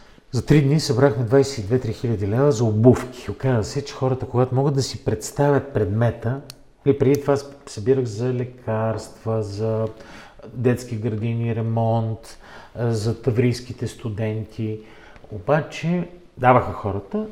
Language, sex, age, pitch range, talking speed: Bulgarian, male, 40-59, 110-140 Hz, 120 wpm